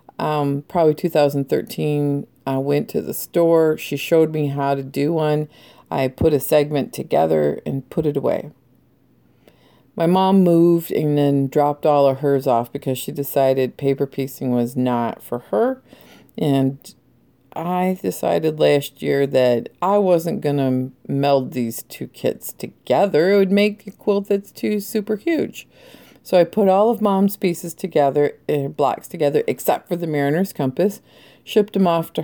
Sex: female